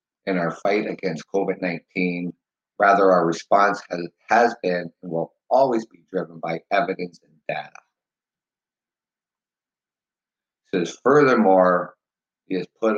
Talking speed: 120 wpm